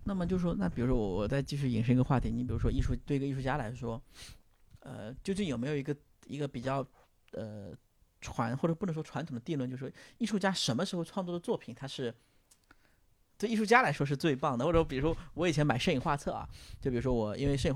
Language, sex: Chinese, male